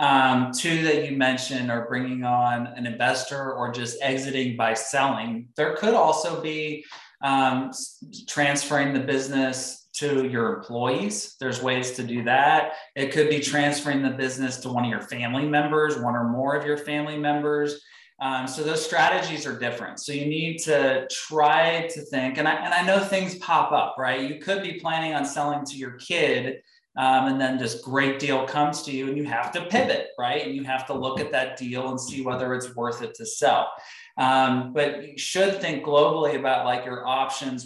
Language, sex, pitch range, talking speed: English, male, 130-150 Hz, 195 wpm